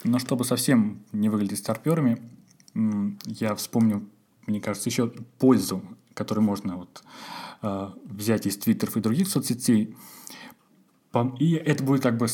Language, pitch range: Russian, 105-130 Hz